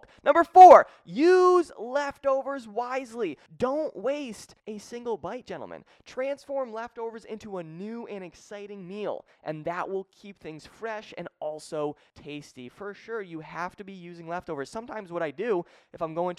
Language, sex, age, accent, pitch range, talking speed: English, male, 20-39, American, 160-220 Hz, 155 wpm